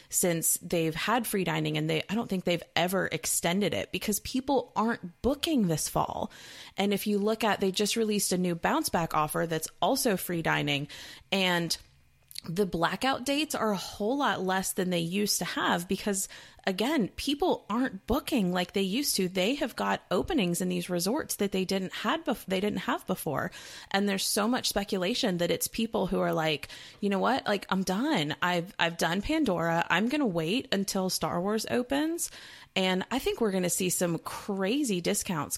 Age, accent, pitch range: 30-49, American, 175-230 Hz